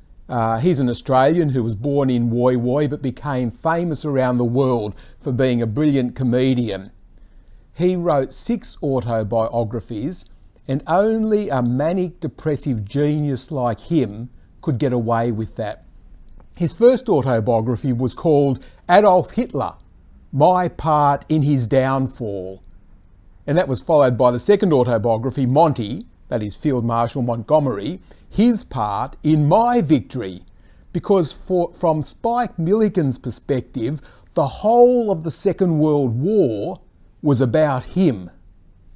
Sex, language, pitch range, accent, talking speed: male, English, 115-160 Hz, Australian, 130 wpm